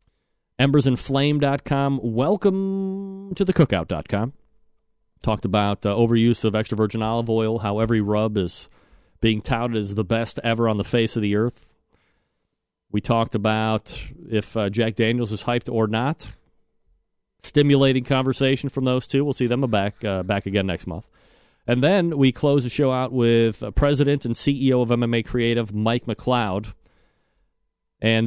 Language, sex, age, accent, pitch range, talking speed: English, male, 40-59, American, 105-135 Hz, 155 wpm